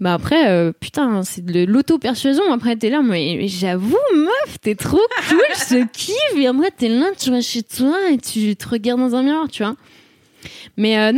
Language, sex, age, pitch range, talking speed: French, female, 20-39, 195-245 Hz, 215 wpm